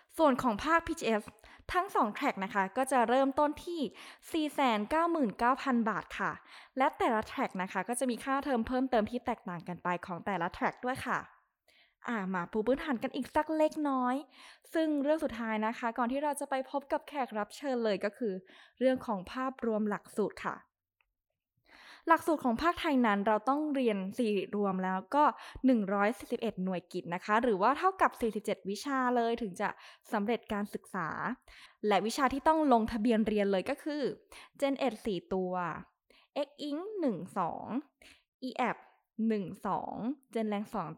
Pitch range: 205-275 Hz